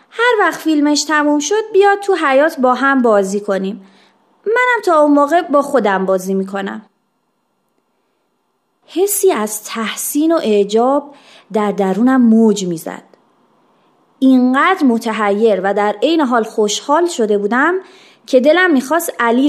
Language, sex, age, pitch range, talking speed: Persian, female, 30-49, 220-345 Hz, 130 wpm